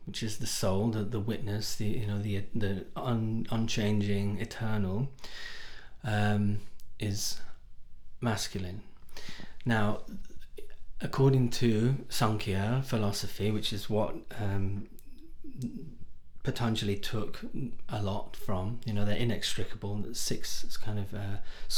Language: English